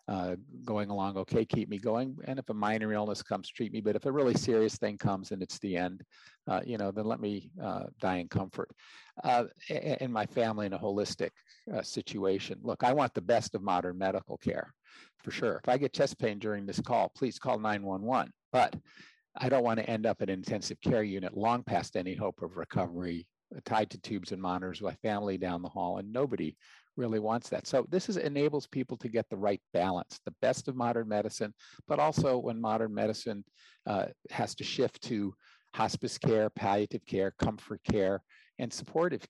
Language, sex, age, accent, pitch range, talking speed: English, male, 50-69, American, 100-120 Hz, 205 wpm